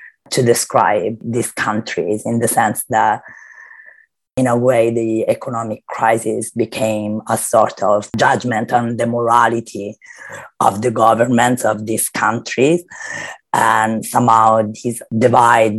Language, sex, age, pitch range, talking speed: English, female, 30-49, 110-120 Hz, 120 wpm